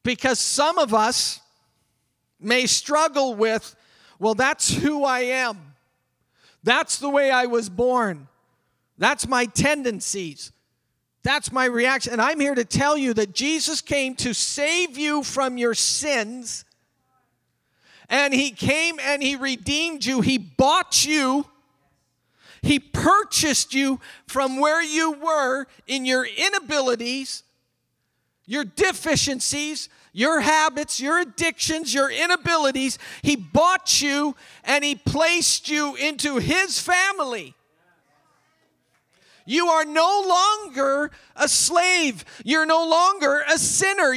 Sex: male